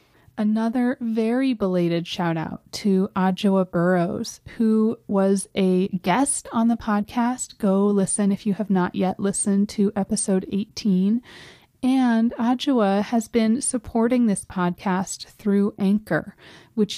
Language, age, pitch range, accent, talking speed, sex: English, 30-49, 190-230 Hz, American, 125 wpm, female